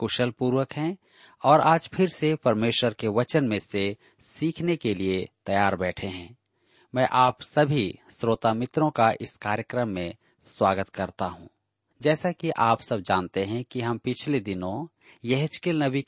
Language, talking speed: Hindi, 155 wpm